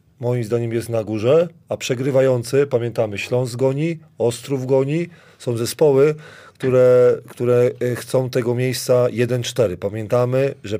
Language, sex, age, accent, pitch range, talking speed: Polish, male, 30-49, native, 110-130 Hz, 120 wpm